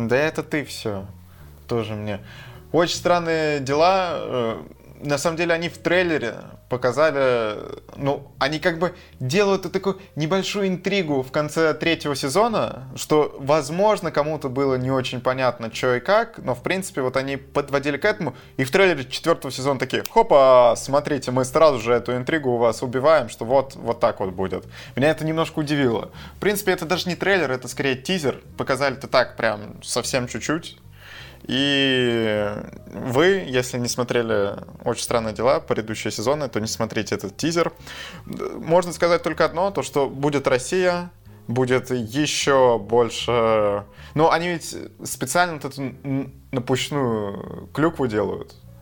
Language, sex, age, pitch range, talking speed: Russian, male, 20-39, 120-165 Hz, 150 wpm